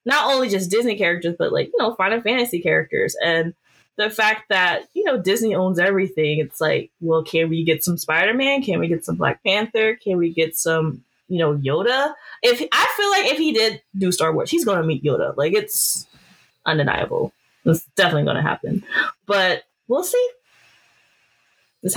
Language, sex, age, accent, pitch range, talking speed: English, female, 20-39, American, 175-280 Hz, 185 wpm